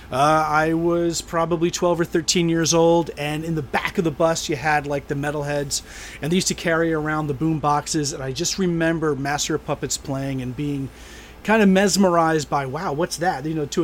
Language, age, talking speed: English, 30-49, 220 wpm